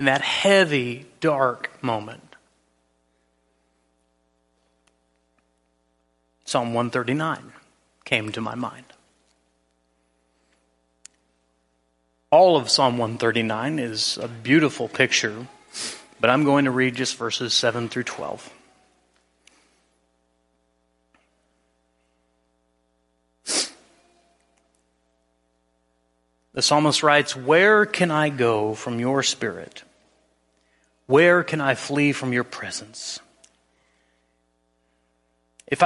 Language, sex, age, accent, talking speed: English, male, 30-49, American, 80 wpm